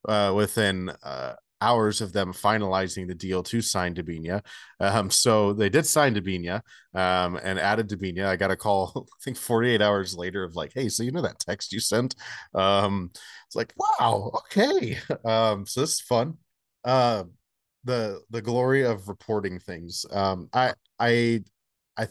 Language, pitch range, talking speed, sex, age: English, 90-110 Hz, 170 wpm, male, 30-49